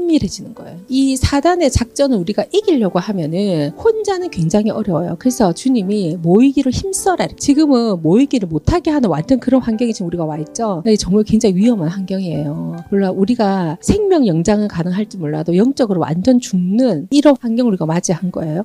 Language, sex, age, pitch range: Korean, female, 40-59, 190-265 Hz